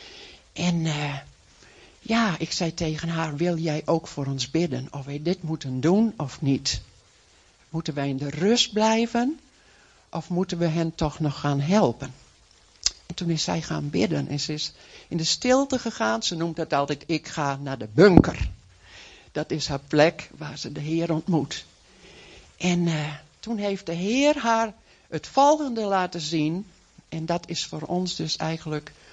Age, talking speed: 60-79, 170 wpm